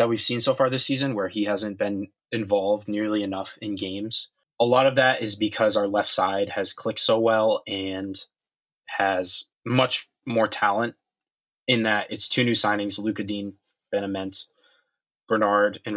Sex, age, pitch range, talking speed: male, 20-39, 105-125 Hz, 170 wpm